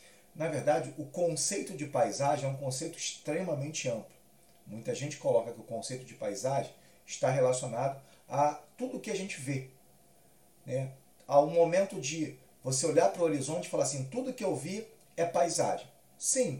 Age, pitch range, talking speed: 40-59, 130-170 Hz, 175 wpm